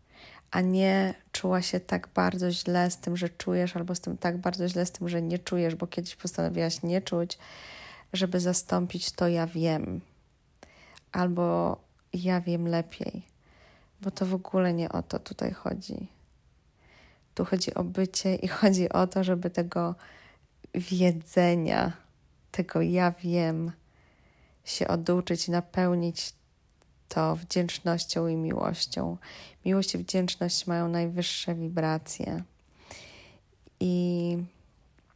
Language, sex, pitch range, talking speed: Polish, female, 165-185 Hz, 125 wpm